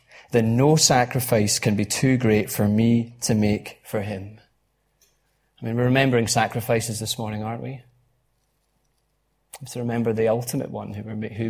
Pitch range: 115-150 Hz